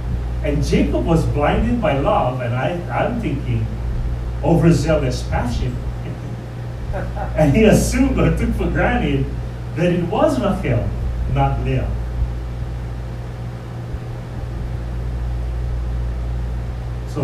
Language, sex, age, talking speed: English, male, 40-59, 90 wpm